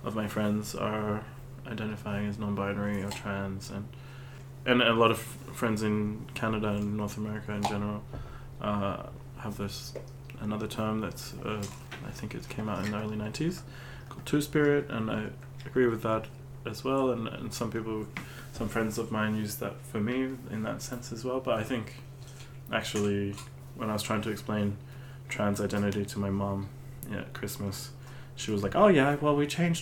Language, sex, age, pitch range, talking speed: English, male, 20-39, 105-130 Hz, 180 wpm